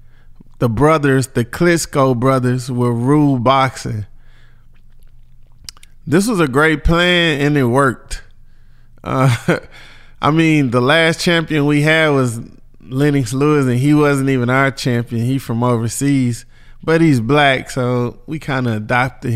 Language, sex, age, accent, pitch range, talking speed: English, male, 20-39, American, 120-155 Hz, 135 wpm